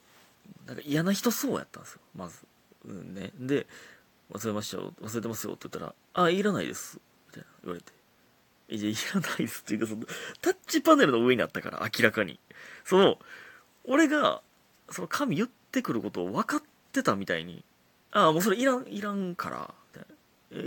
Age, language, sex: 30-49, Japanese, male